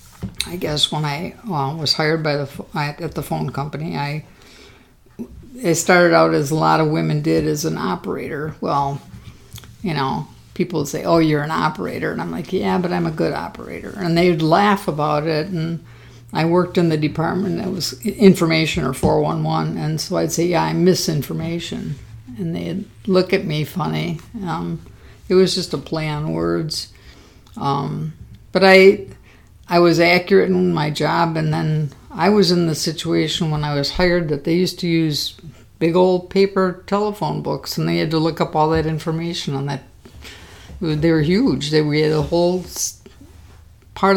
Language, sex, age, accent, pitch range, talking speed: English, female, 50-69, American, 145-175 Hz, 180 wpm